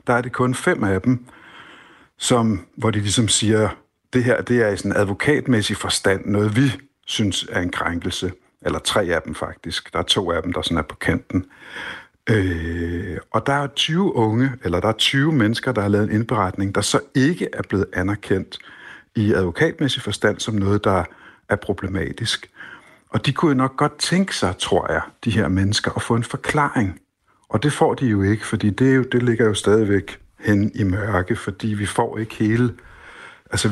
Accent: native